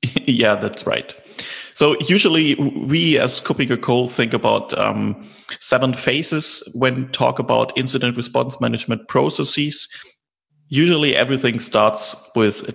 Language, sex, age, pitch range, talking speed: English, male, 30-49, 110-130 Hz, 125 wpm